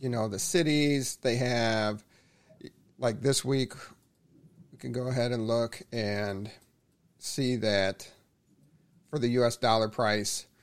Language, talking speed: English, 130 wpm